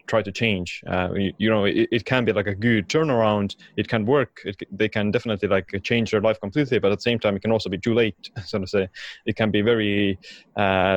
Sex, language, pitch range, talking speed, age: male, English, 95-115 Hz, 250 wpm, 20-39